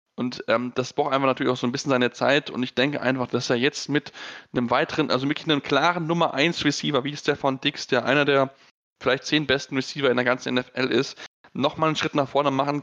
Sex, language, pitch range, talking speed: male, German, 130-150 Hz, 235 wpm